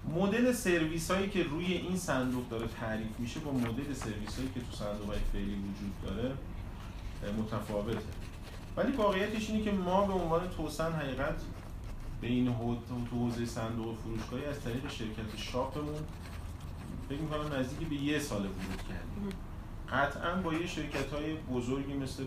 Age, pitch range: 30-49, 105-155 Hz